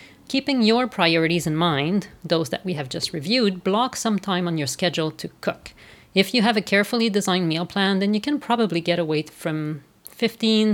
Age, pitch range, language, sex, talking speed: 40-59, 165-205 Hz, English, female, 195 wpm